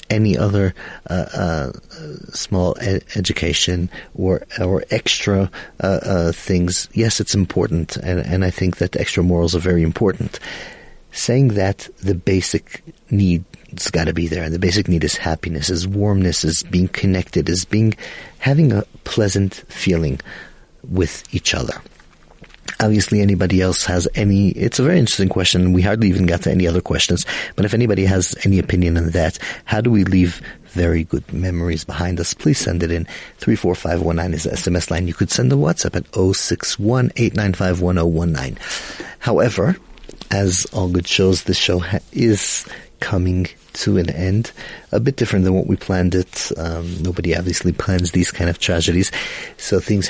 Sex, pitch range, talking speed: male, 85-100 Hz, 175 wpm